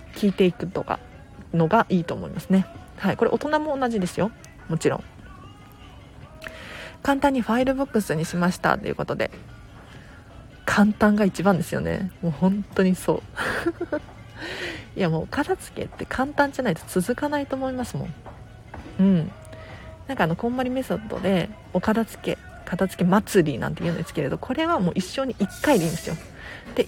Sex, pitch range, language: female, 170-240 Hz, Japanese